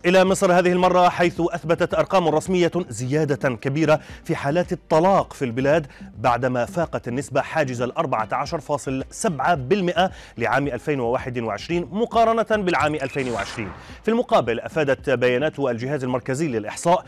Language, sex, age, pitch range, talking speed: Arabic, male, 30-49, 125-175 Hz, 115 wpm